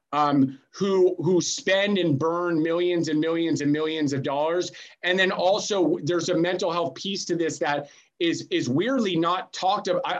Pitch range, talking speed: 165-210 Hz, 180 wpm